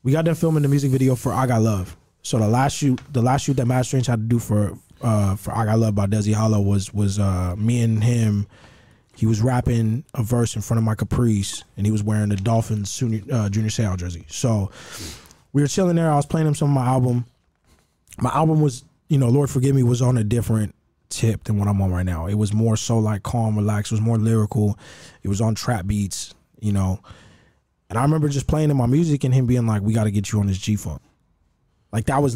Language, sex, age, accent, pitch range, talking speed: English, male, 20-39, American, 105-125 Hz, 250 wpm